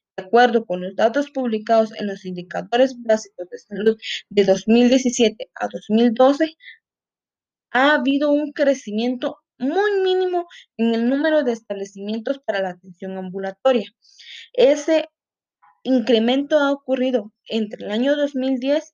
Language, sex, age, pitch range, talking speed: Spanish, female, 20-39, 210-270 Hz, 125 wpm